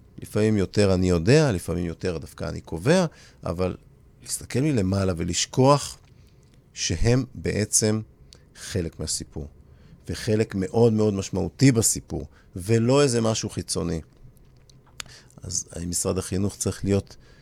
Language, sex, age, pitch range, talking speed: Hebrew, male, 50-69, 95-125 Hz, 110 wpm